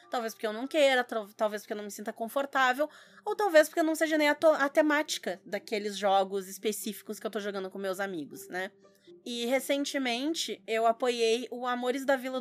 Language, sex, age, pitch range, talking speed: Portuguese, female, 20-39, 220-275 Hz, 200 wpm